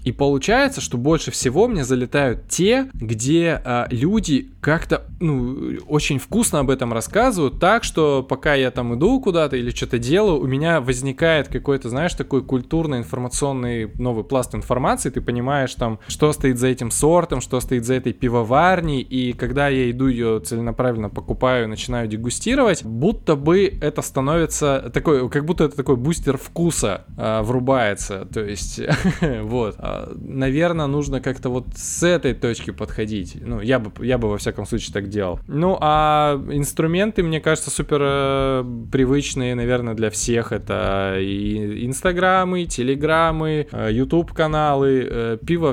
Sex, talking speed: male, 145 wpm